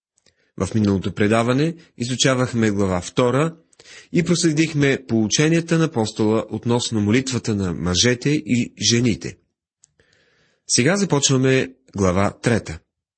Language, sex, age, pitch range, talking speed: Bulgarian, male, 30-49, 95-145 Hz, 90 wpm